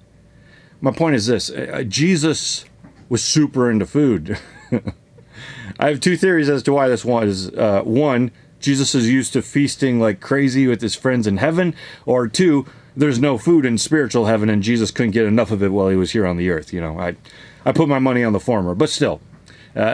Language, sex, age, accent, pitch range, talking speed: English, male, 30-49, American, 110-145 Hz, 205 wpm